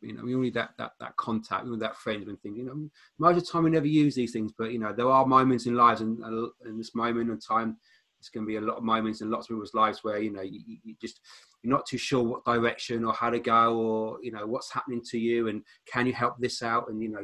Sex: male